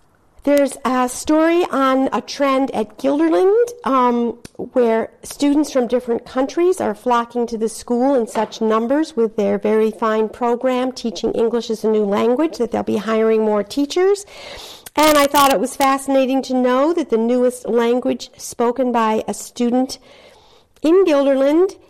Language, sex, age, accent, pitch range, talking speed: English, female, 50-69, American, 225-275 Hz, 155 wpm